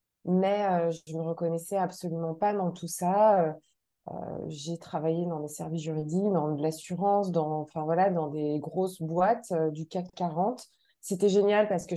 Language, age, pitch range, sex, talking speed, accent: French, 20-39, 165-215 Hz, female, 180 wpm, French